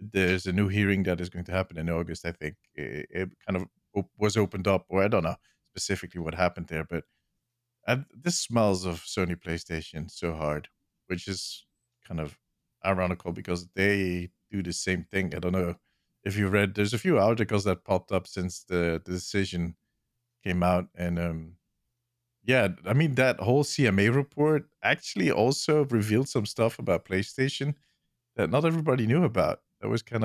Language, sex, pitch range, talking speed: English, male, 90-125 Hz, 180 wpm